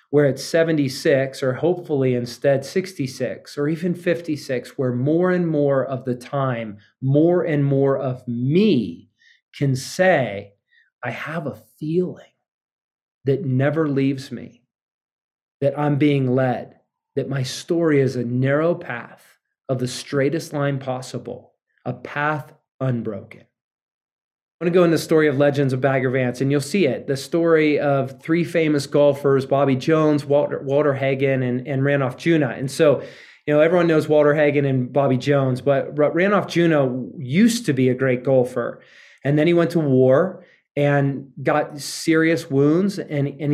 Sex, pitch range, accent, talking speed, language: male, 130-155 Hz, American, 155 wpm, English